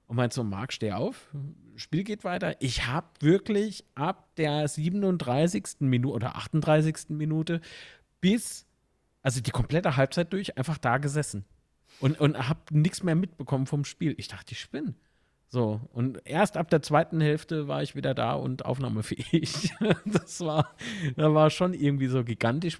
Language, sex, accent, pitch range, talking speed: German, male, German, 120-160 Hz, 160 wpm